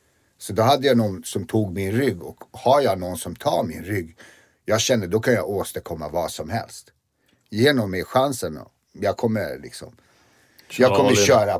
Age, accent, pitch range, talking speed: 60-79, native, 95-115 Hz, 185 wpm